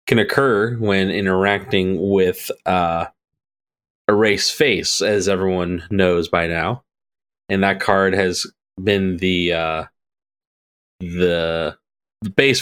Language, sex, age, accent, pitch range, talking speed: English, male, 30-49, American, 90-110 Hz, 110 wpm